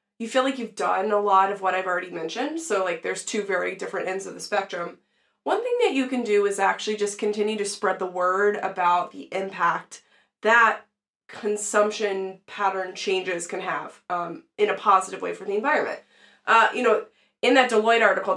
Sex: female